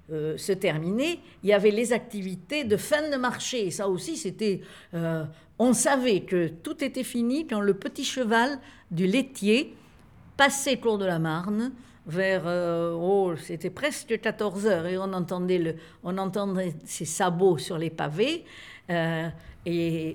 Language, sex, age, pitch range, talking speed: French, female, 60-79, 170-225 Hz, 160 wpm